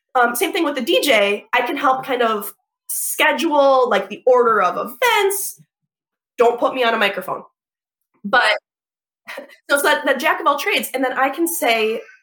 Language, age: English, 20-39